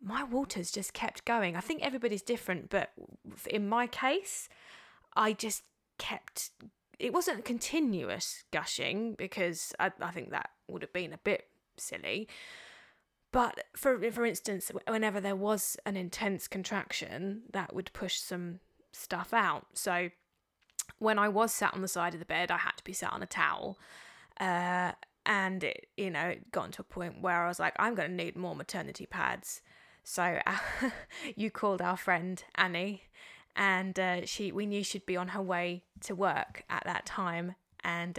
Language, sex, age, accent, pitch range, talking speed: English, female, 20-39, British, 180-215 Hz, 175 wpm